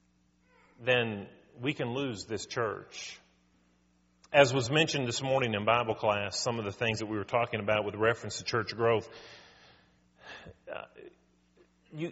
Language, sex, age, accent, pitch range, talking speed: English, male, 40-59, American, 105-170 Hz, 140 wpm